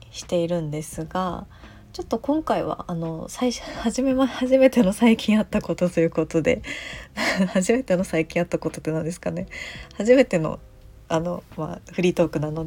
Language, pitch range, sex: Japanese, 160-225 Hz, female